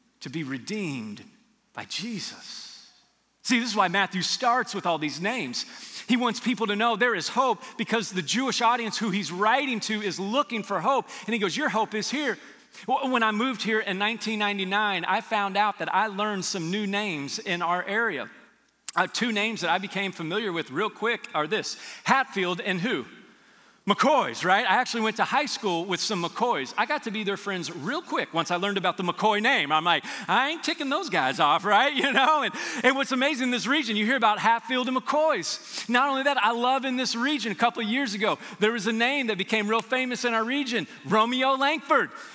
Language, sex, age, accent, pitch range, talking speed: English, male, 40-59, American, 205-255 Hz, 215 wpm